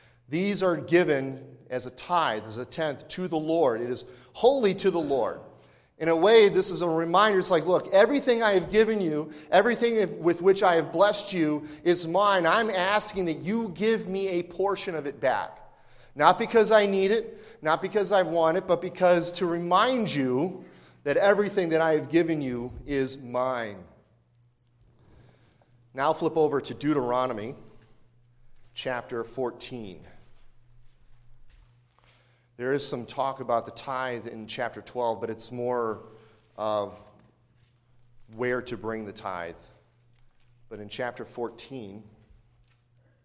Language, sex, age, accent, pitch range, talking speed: English, male, 40-59, American, 120-165 Hz, 150 wpm